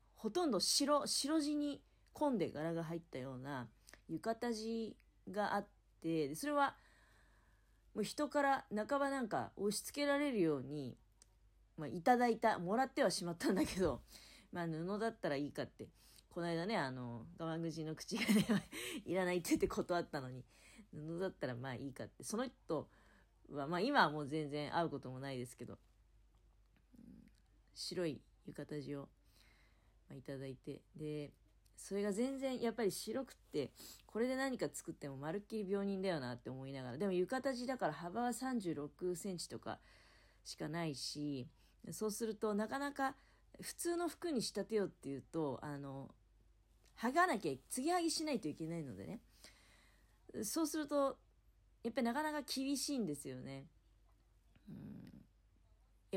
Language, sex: Japanese, female